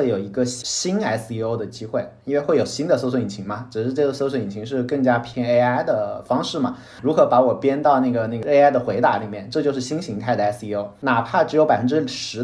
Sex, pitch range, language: male, 110-140 Hz, Chinese